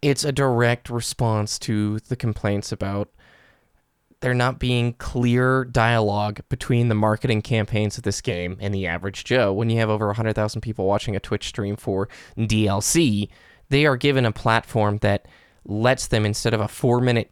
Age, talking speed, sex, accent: 20-39, 165 wpm, male, American